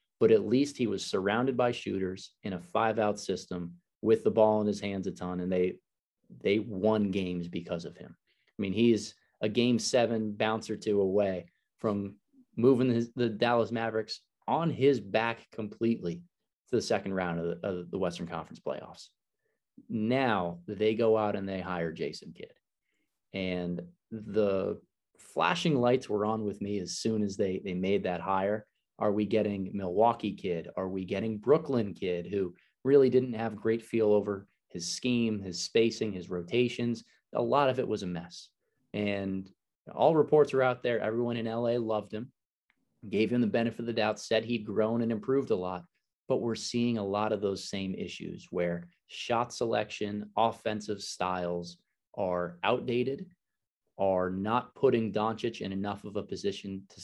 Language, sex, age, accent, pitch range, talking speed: English, male, 20-39, American, 95-115 Hz, 175 wpm